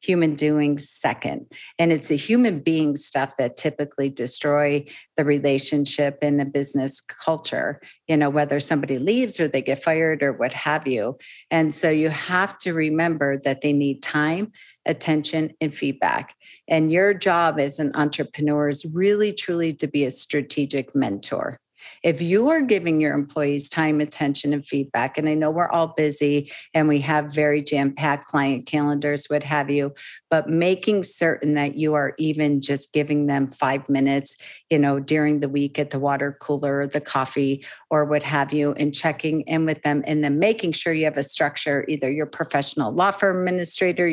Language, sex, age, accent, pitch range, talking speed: English, female, 50-69, American, 145-165 Hz, 175 wpm